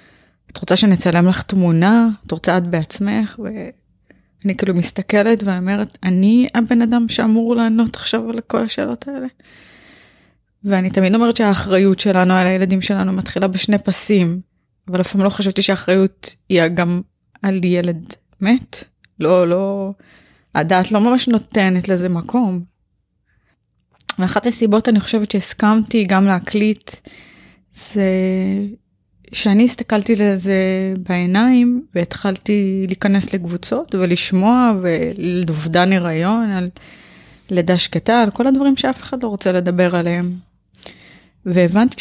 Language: Hebrew